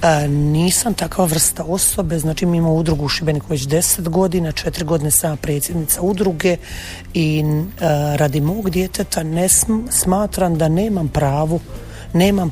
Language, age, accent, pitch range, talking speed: Croatian, 40-59, native, 155-185 Hz, 145 wpm